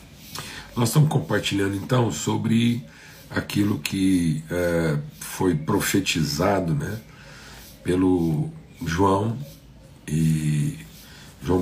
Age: 60-79